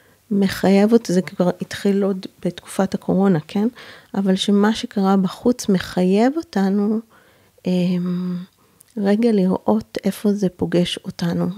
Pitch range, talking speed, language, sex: 185-215 Hz, 115 wpm, Hebrew, female